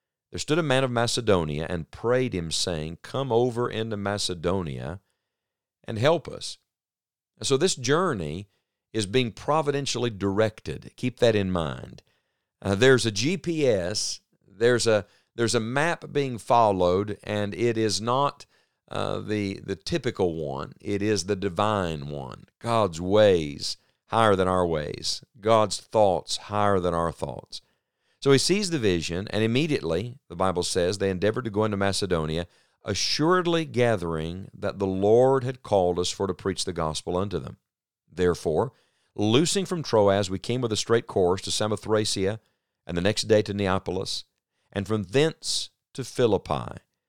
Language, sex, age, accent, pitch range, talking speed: English, male, 50-69, American, 90-120 Hz, 150 wpm